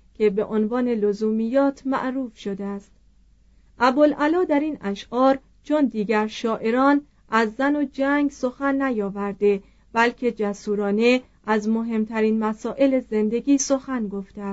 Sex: female